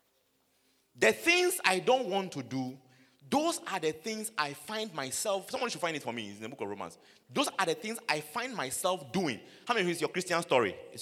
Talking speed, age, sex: 235 wpm, 30-49, male